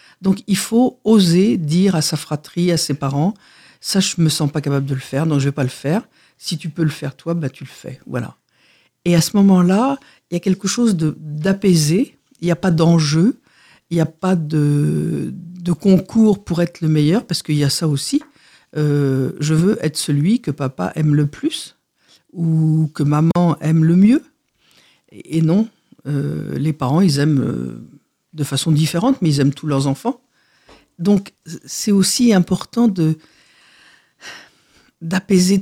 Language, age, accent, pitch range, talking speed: French, 50-69, French, 150-190 Hz, 185 wpm